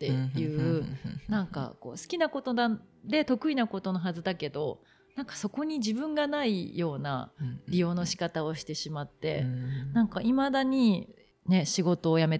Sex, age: female, 40-59